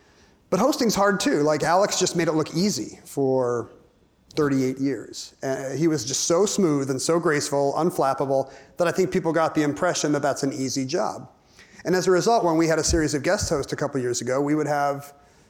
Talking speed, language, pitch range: 215 wpm, English, 140-170 Hz